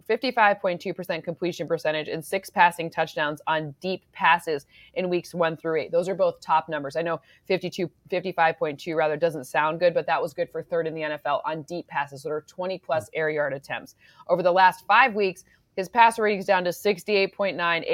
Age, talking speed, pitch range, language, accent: 20-39, 190 wpm, 160-190 Hz, English, American